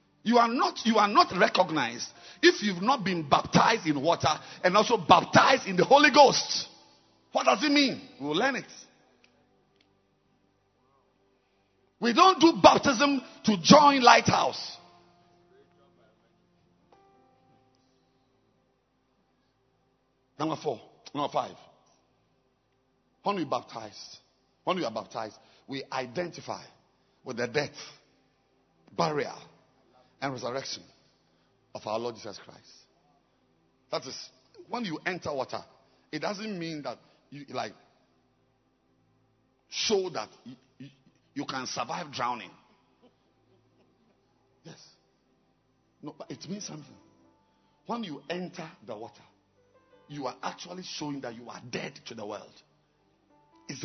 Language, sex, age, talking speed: English, male, 50-69, 115 wpm